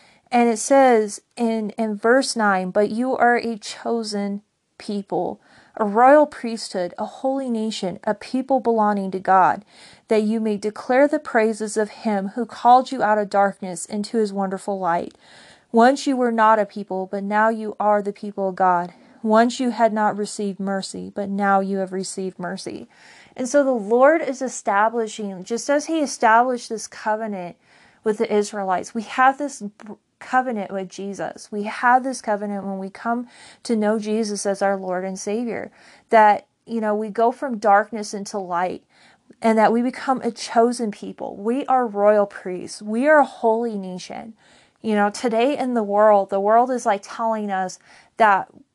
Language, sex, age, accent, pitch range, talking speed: English, female, 30-49, American, 200-235 Hz, 175 wpm